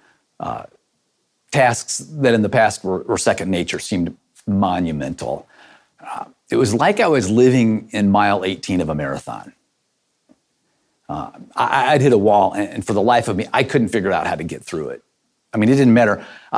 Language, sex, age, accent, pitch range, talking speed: English, male, 40-59, American, 110-160 Hz, 190 wpm